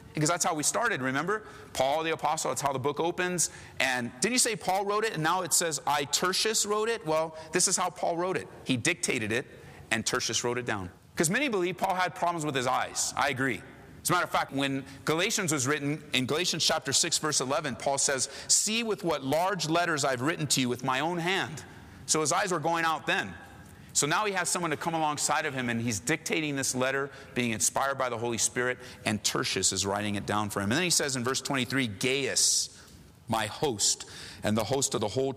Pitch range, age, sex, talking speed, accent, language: 125-165 Hz, 30-49, male, 230 wpm, American, English